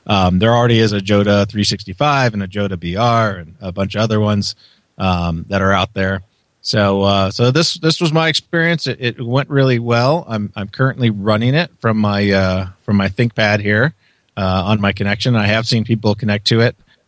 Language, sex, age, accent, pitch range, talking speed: English, male, 30-49, American, 95-115 Hz, 205 wpm